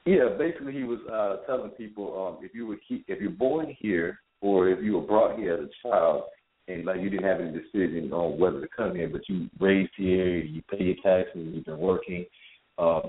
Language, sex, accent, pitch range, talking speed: English, male, American, 85-100 Hz, 220 wpm